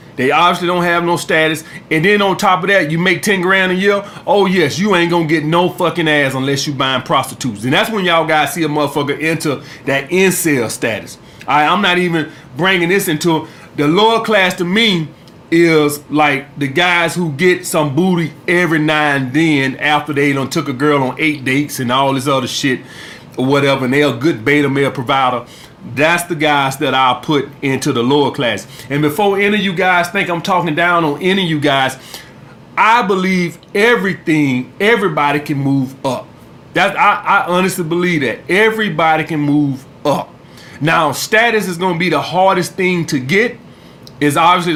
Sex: male